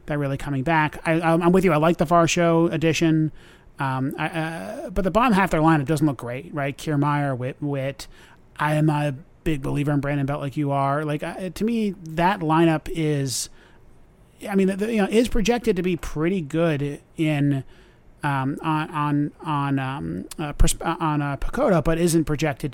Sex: male